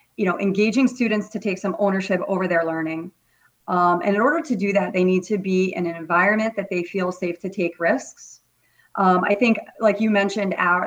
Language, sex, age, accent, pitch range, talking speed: English, female, 30-49, American, 180-215 Hz, 215 wpm